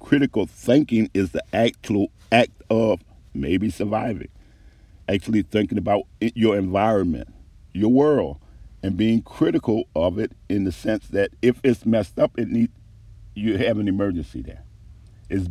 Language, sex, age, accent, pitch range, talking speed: English, male, 50-69, American, 85-110 Hz, 145 wpm